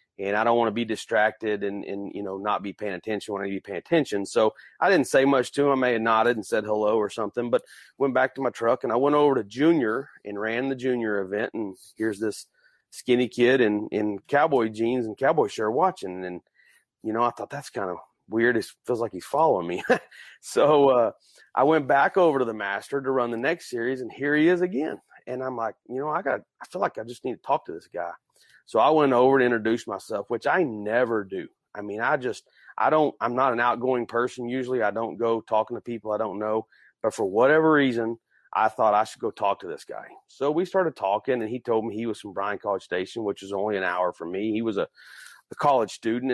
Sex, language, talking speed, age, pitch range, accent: male, English, 250 wpm, 30-49, 105-130 Hz, American